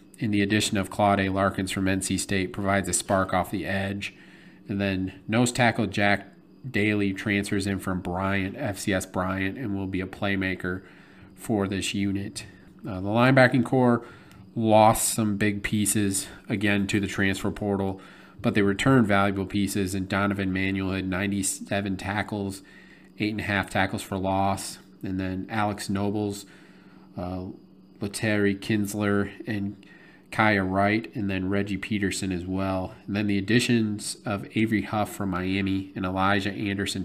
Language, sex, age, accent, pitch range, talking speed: English, male, 40-59, American, 95-105 Hz, 155 wpm